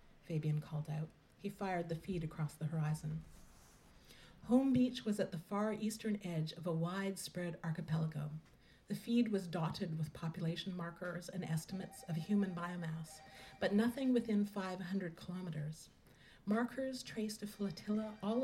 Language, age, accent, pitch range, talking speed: English, 40-59, American, 160-210 Hz, 145 wpm